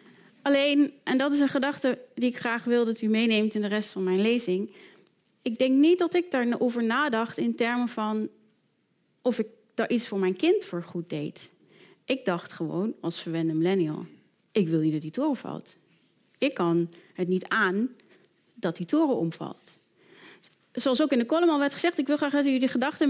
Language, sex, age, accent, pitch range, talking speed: Dutch, female, 30-49, Dutch, 205-270 Hz, 195 wpm